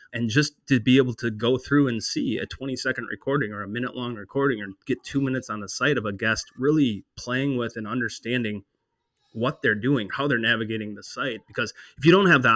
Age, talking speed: 20-39, 230 wpm